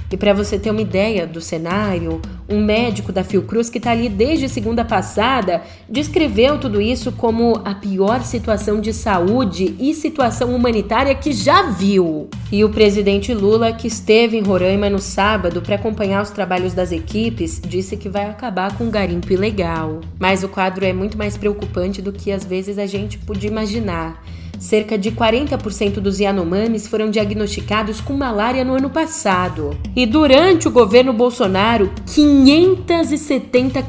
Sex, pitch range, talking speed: female, 185-230 Hz, 160 wpm